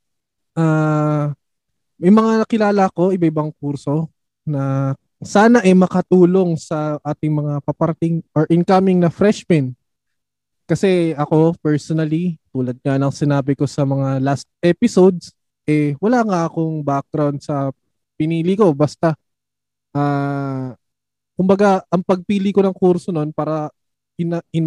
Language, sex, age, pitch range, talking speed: Filipino, male, 20-39, 140-175 Hz, 130 wpm